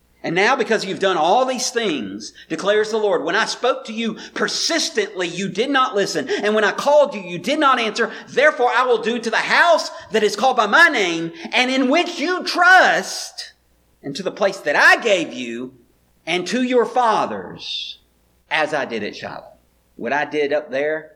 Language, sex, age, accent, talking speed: English, male, 40-59, American, 200 wpm